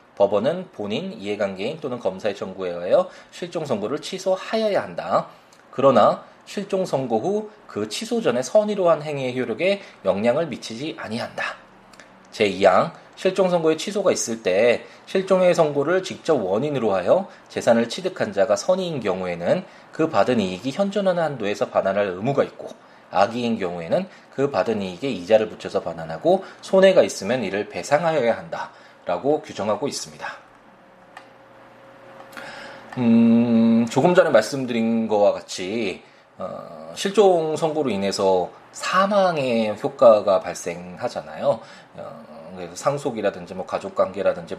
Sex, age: male, 20-39